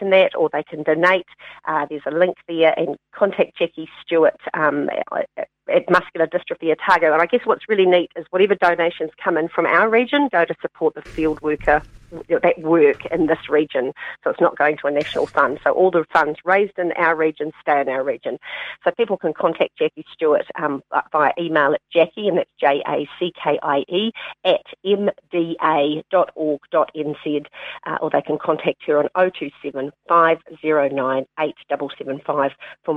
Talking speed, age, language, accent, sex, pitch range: 165 wpm, 40-59, English, Australian, female, 150-185 Hz